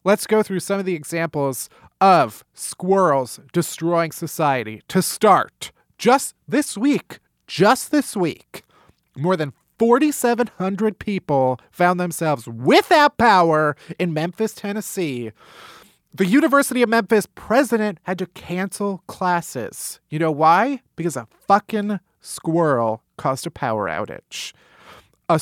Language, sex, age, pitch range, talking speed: English, male, 30-49, 165-220 Hz, 120 wpm